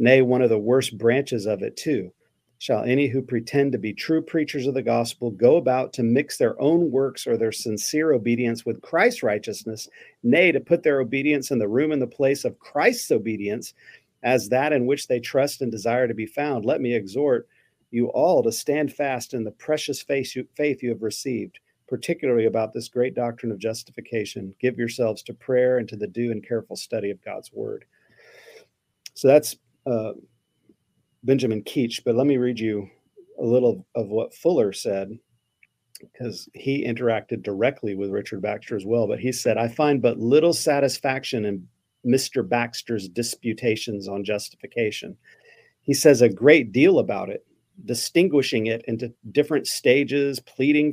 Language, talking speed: English, 175 wpm